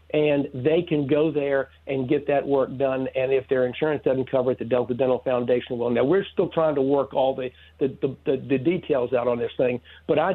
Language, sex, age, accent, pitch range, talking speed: English, male, 60-79, American, 130-155 Hz, 240 wpm